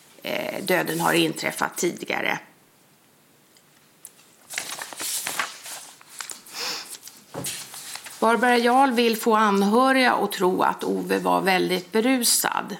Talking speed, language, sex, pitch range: 75 wpm, Swedish, female, 170-215 Hz